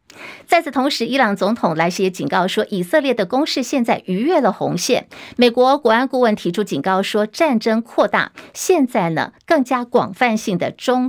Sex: female